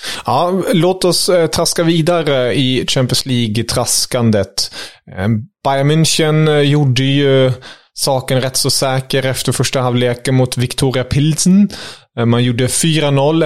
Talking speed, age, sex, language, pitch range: 110 wpm, 30-49, male, English, 115-140 Hz